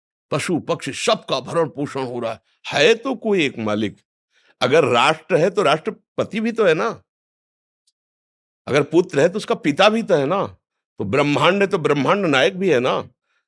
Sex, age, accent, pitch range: male, 50-69, native, 125-190 Hz